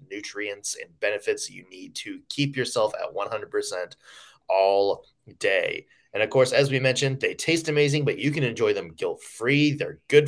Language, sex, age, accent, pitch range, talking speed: English, male, 20-39, American, 135-190 Hz, 170 wpm